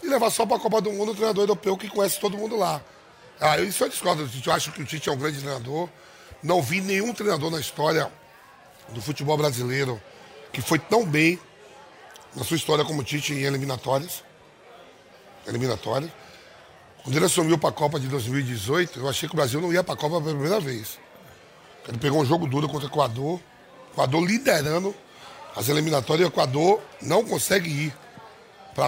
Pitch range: 145-185 Hz